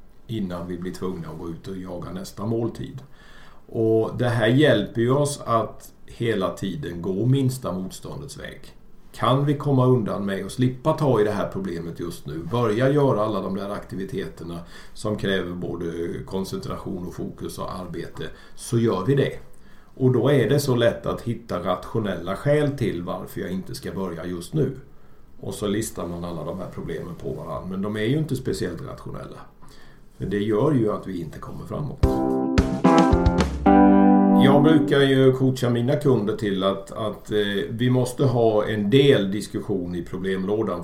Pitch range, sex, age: 90-125 Hz, male, 50-69